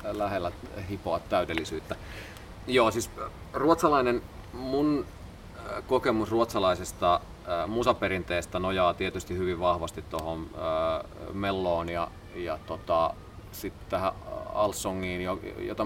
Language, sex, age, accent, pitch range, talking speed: Finnish, male, 30-49, native, 90-115 Hz, 85 wpm